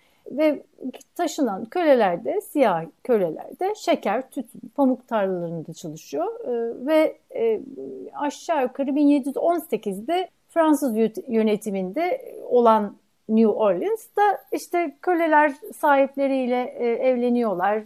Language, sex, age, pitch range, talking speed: Turkish, female, 60-79, 215-315 Hz, 75 wpm